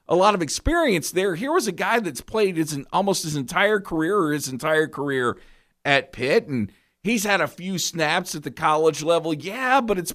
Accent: American